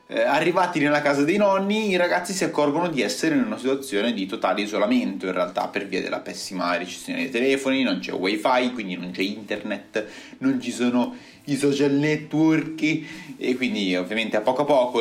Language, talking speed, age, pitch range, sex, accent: Italian, 185 wpm, 30-49, 110-180 Hz, male, native